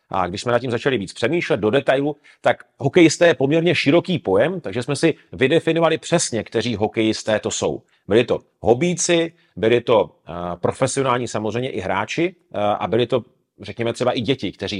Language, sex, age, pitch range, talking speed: Czech, male, 40-59, 110-145 Hz, 170 wpm